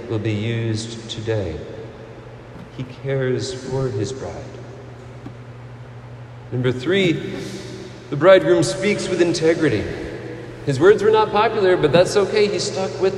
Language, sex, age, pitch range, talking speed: English, male, 40-59, 120-150 Hz, 125 wpm